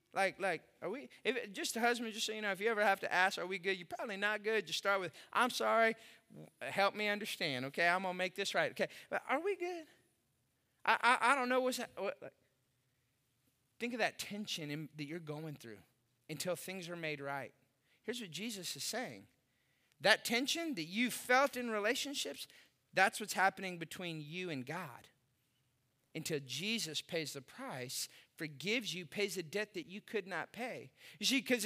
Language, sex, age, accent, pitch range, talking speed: English, male, 30-49, American, 155-250 Hz, 200 wpm